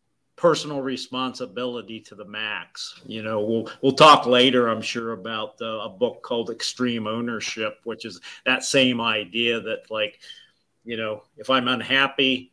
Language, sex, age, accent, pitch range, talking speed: English, male, 50-69, American, 115-130 Hz, 155 wpm